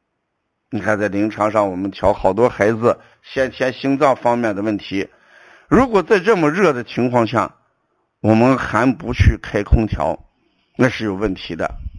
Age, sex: 60-79, male